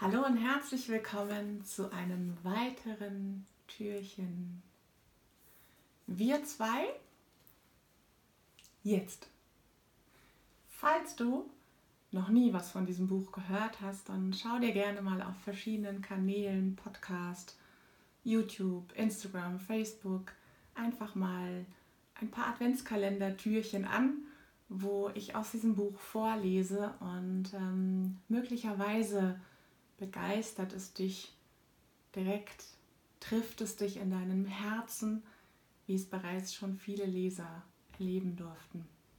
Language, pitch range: German, 190-225 Hz